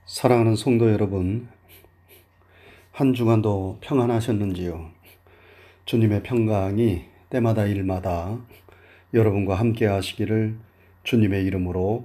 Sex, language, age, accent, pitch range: male, Korean, 40-59, native, 90-115 Hz